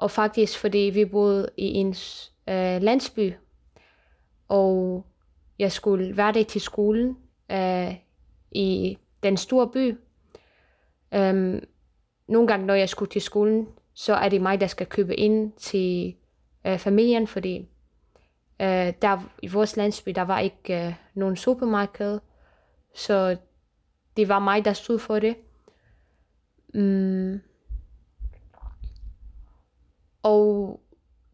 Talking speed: 100 wpm